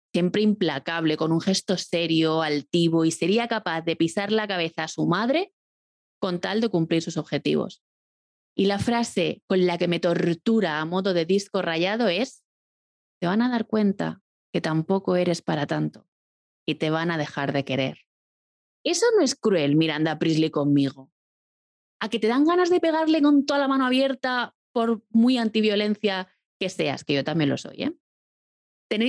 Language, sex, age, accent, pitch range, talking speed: Spanish, female, 20-39, Spanish, 165-220 Hz, 175 wpm